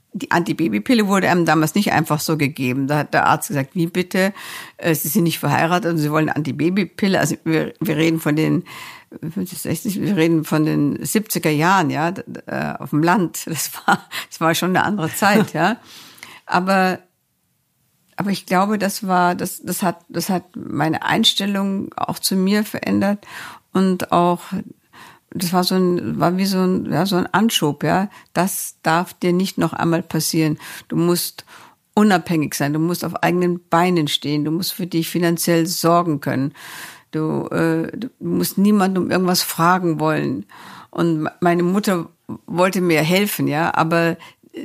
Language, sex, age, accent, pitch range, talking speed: German, female, 60-79, German, 160-185 Hz, 160 wpm